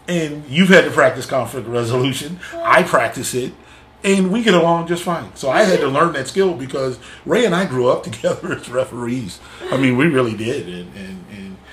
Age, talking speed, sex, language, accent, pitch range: 30-49, 205 wpm, male, English, American, 105-135 Hz